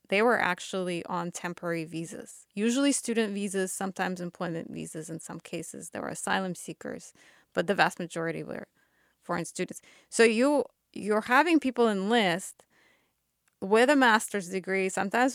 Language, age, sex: English, 20-39, female